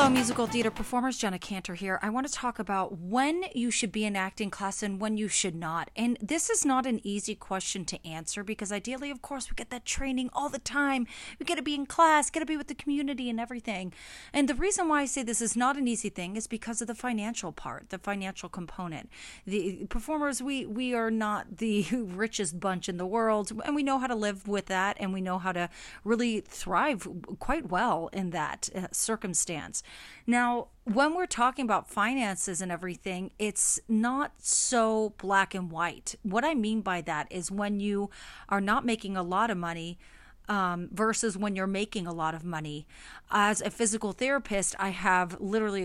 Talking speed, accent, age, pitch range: 205 wpm, American, 30-49, 190-240 Hz